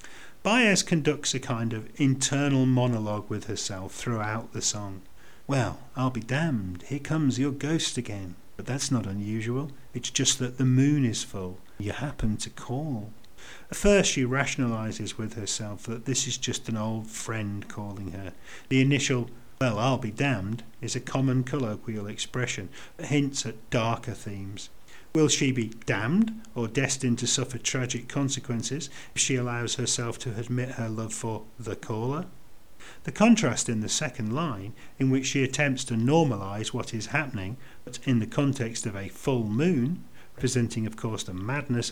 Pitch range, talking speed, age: 110-135 Hz, 165 wpm, 40-59